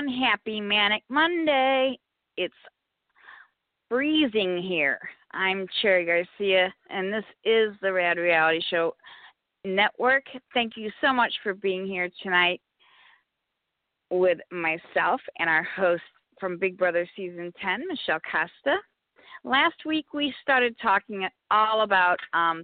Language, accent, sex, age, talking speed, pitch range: English, American, female, 40-59, 120 wpm, 175-235 Hz